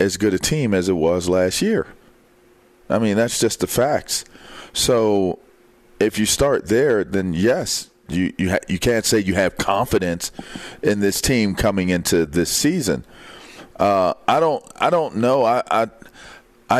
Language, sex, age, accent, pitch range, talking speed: English, male, 40-59, American, 95-115 Hz, 155 wpm